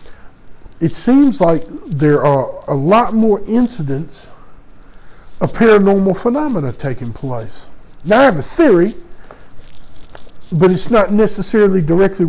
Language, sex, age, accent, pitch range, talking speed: English, male, 50-69, American, 125-175 Hz, 115 wpm